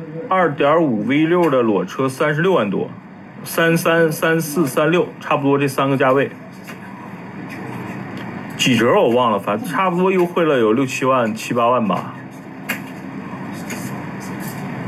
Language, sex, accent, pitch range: Chinese, male, native, 140-185 Hz